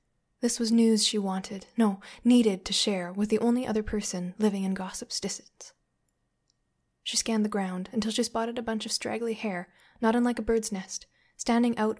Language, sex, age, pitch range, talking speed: English, female, 20-39, 200-230 Hz, 185 wpm